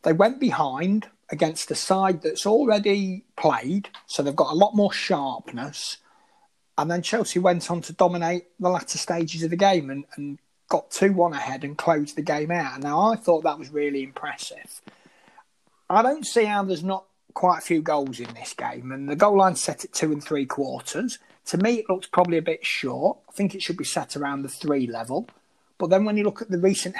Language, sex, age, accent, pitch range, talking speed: English, male, 30-49, British, 150-200 Hz, 210 wpm